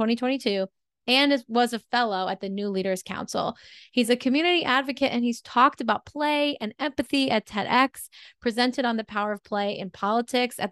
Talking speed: 180 wpm